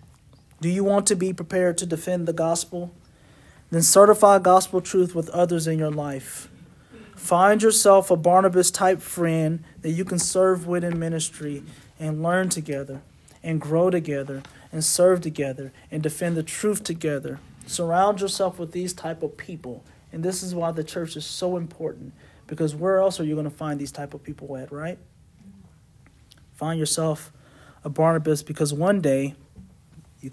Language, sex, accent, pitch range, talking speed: English, male, American, 150-180 Hz, 165 wpm